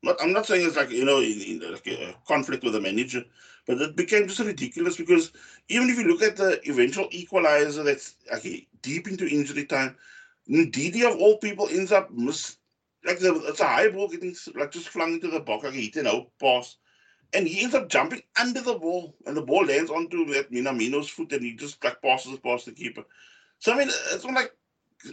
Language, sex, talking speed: English, male, 215 wpm